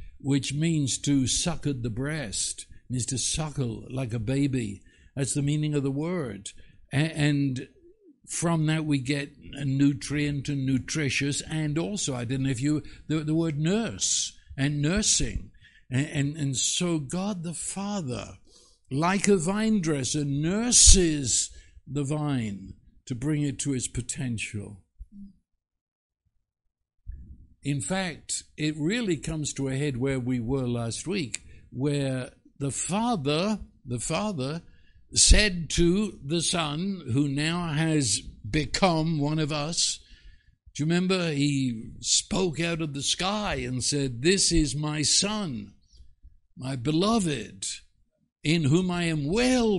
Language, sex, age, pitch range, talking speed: English, male, 60-79, 125-170 Hz, 135 wpm